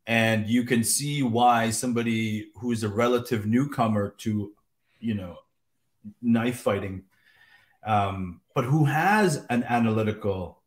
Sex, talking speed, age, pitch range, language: male, 125 wpm, 30-49, 100-120 Hz, English